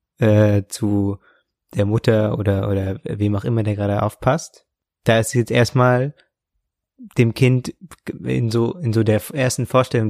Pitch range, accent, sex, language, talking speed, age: 105-120 Hz, German, male, German, 145 wpm, 20-39